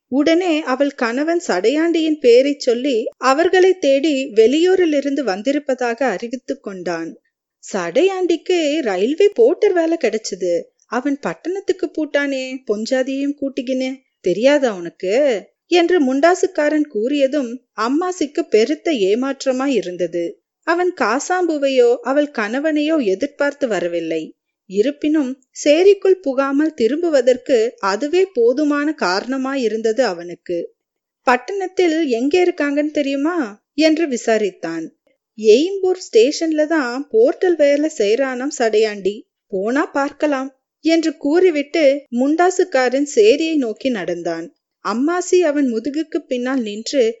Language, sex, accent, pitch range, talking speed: Tamil, female, native, 240-325 Hz, 90 wpm